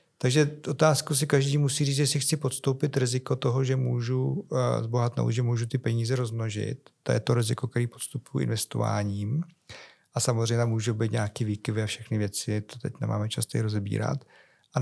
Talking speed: 170 wpm